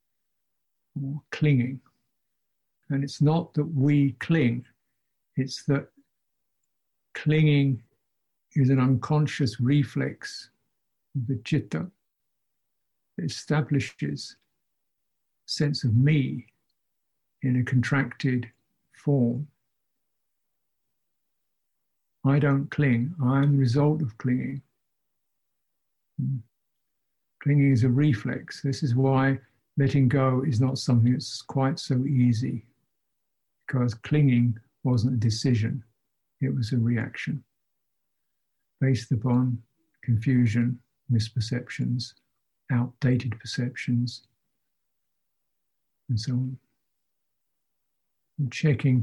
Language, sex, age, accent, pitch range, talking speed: English, male, 60-79, British, 120-140 Hz, 85 wpm